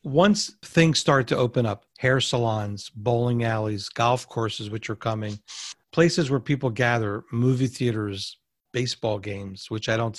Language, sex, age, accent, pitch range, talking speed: English, male, 50-69, American, 115-140 Hz, 155 wpm